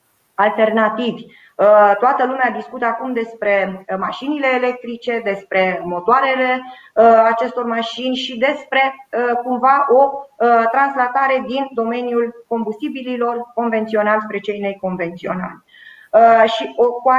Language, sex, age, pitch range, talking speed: Romanian, female, 20-39, 215-270 Hz, 85 wpm